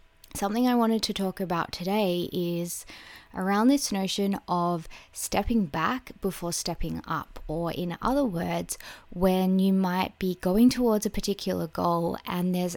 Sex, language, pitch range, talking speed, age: female, English, 170-205 Hz, 150 wpm, 20-39